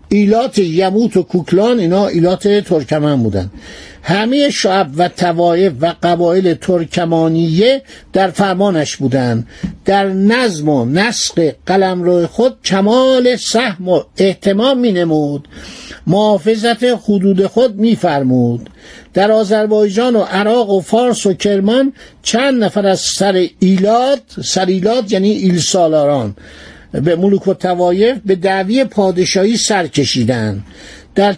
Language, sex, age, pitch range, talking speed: Persian, male, 60-79, 175-220 Hz, 115 wpm